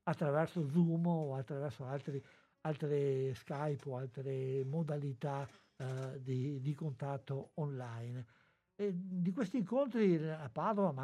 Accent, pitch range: native, 135-165 Hz